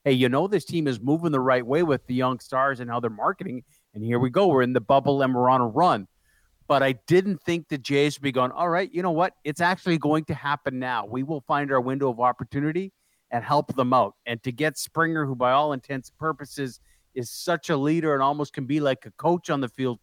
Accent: American